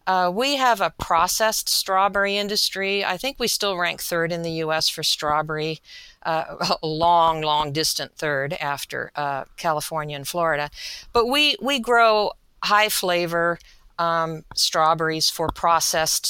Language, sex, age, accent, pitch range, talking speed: English, female, 50-69, American, 160-195 Hz, 145 wpm